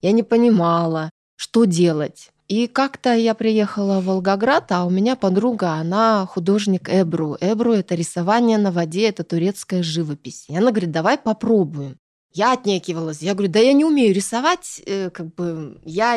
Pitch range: 175-230 Hz